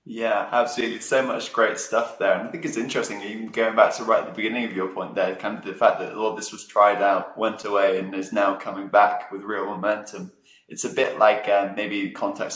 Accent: British